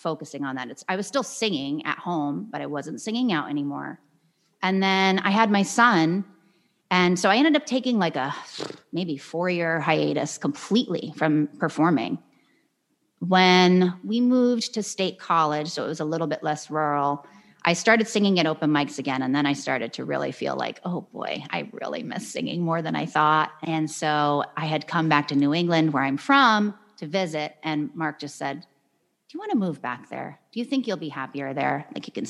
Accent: American